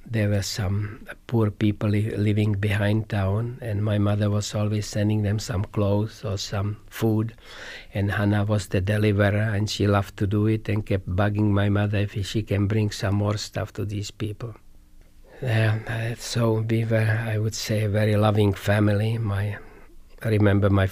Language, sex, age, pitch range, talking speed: English, male, 50-69, 100-110 Hz, 175 wpm